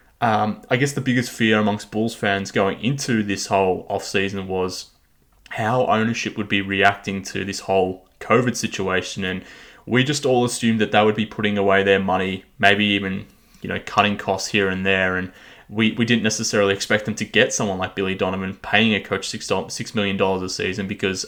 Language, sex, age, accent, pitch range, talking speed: English, male, 20-39, Australian, 100-115 Hz, 200 wpm